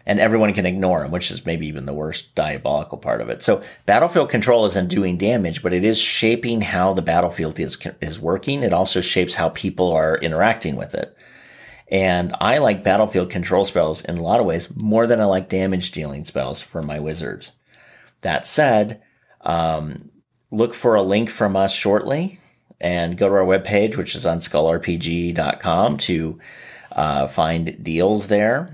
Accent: American